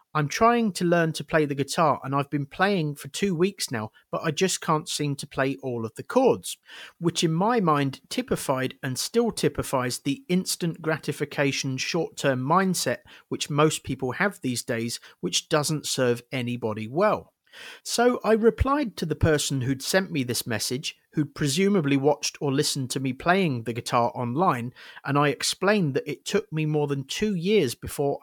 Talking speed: 185 wpm